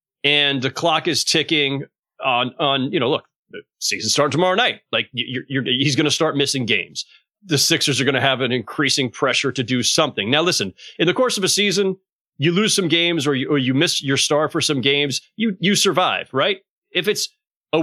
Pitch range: 135-175 Hz